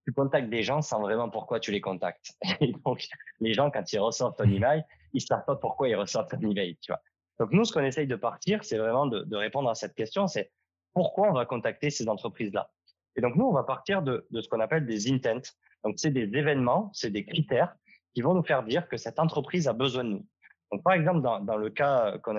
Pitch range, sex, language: 110-155 Hz, male, French